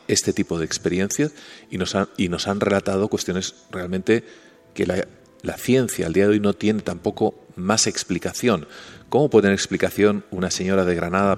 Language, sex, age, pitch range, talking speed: Spanish, male, 40-59, 90-105 Hz, 170 wpm